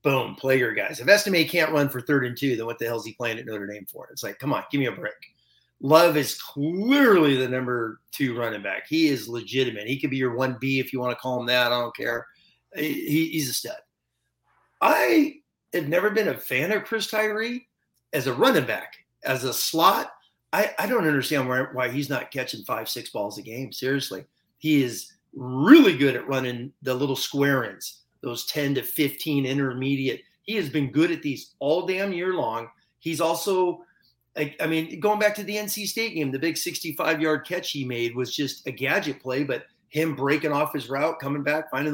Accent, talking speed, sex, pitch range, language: American, 210 wpm, male, 125-165 Hz, English